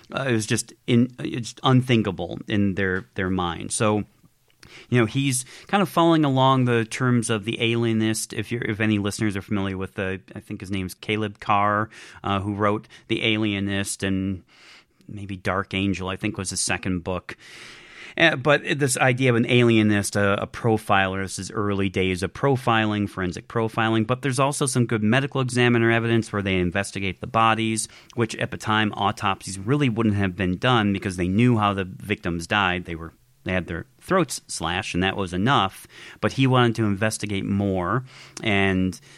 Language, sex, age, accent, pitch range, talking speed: English, male, 30-49, American, 95-115 Hz, 180 wpm